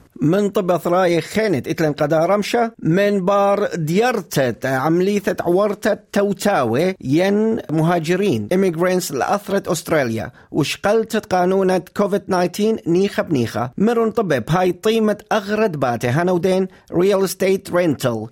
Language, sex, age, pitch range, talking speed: English, male, 40-59, 155-210 Hz, 110 wpm